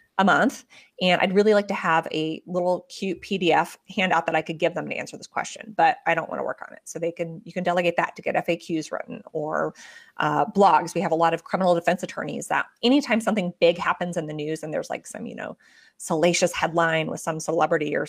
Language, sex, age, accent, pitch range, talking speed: English, female, 30-49, American, 165-190 Hz, 240 wpm